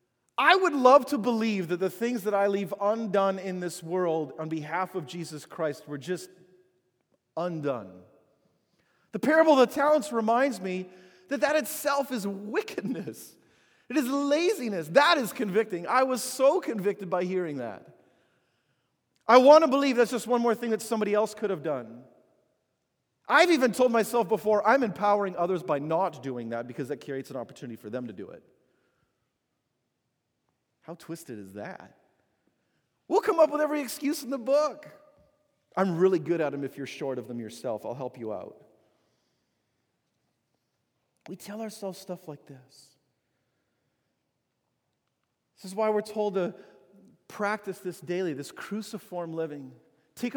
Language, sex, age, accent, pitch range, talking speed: English, male, 40-59, American, 170-240 Hz, 155 wpm